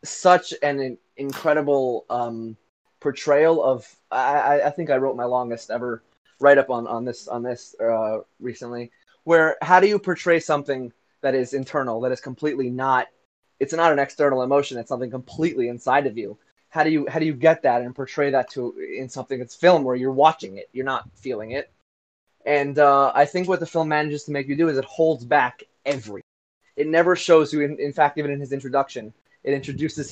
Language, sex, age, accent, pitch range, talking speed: English, male, 20-39, American, 130-150 Hz, 200 wpm